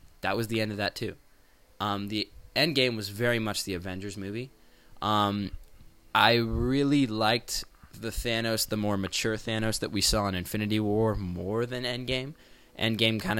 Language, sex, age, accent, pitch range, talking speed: English, male, 20-39, American, 100-120 Hz, 170 wpm